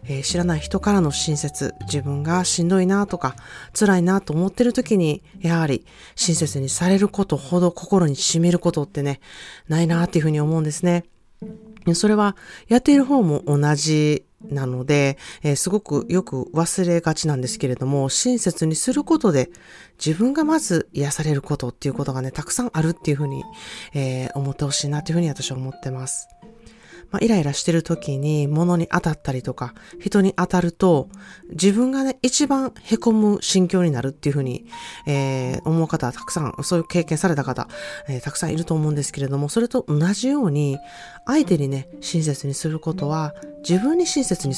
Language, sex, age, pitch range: Japanese, female, 40-59, 145-195 Hz